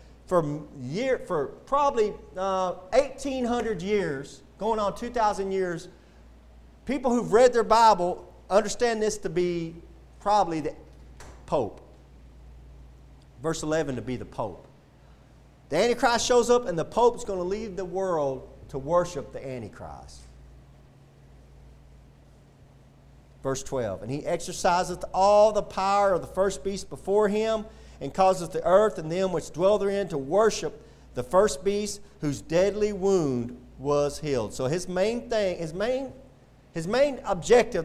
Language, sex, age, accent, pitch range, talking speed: English, male, 40-59, American, 145-225 Hz, 140 wpm